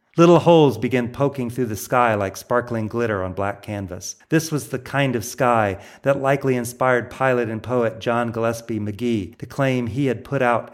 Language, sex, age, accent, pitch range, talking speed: English, male, 40-59, American, 110-135 Hz, 190 wpm